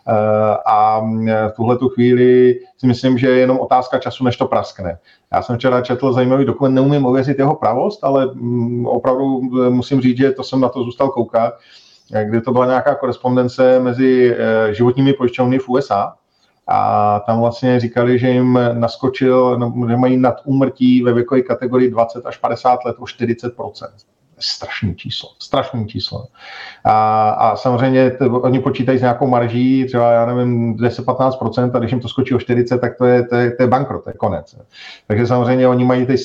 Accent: native